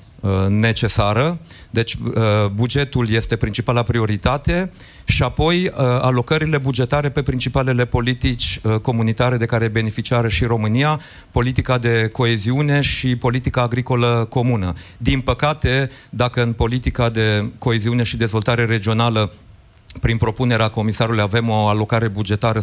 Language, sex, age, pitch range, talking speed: Romanian, male, 40-59, 115-130 Hz, 115 wpm